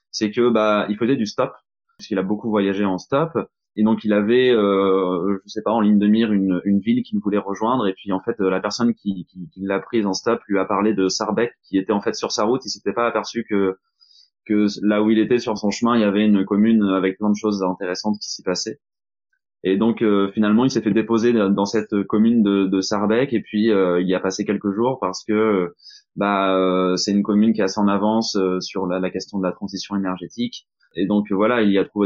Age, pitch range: 20-39, 95-110 Hz